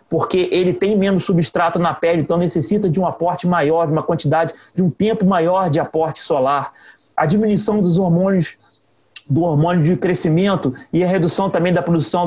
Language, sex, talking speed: Portuguese, male, 180 wpm